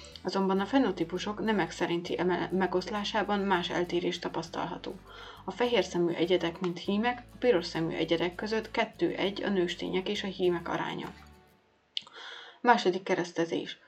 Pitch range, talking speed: 175-205 Hz, 130 wpm